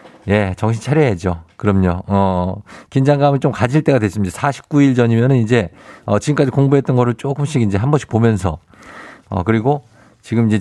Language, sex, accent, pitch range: Korean, male, native, 100-150 Hz